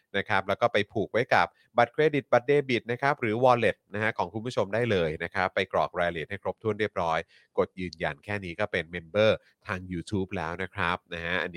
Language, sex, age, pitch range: Thai, male, 30-49, 90-120 Hz